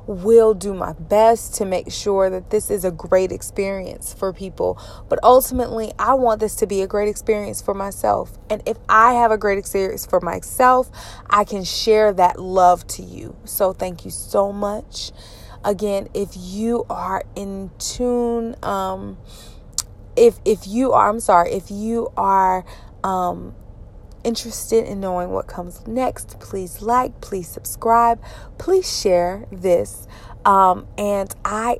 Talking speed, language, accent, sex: 155 wpm, English, American, female